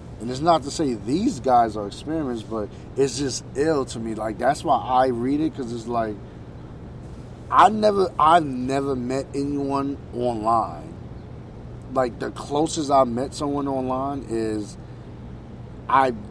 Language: English